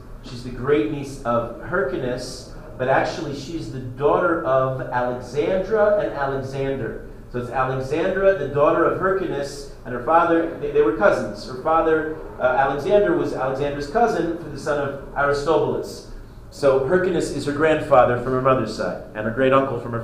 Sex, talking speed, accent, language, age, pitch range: male, 160 wpm, American, English, 40-59, 125-160 Hz